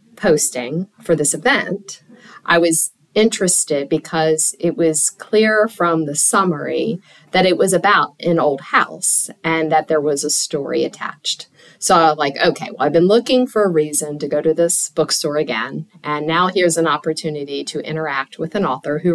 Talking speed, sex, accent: 180 wpm, female, American